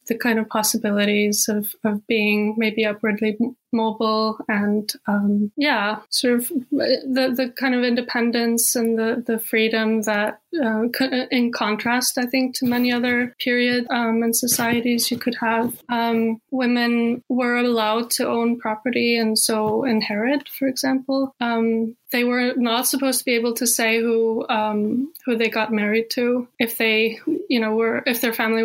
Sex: female